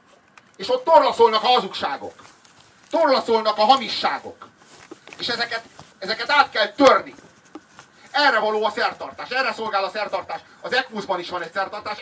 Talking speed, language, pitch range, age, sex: 140 wpm, Hungarian, 200-235 Hz, 30-49, male